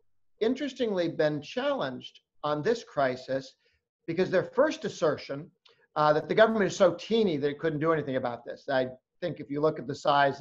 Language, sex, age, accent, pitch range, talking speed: English, male, 50-69, American, 140-180 Hz, 185 wpm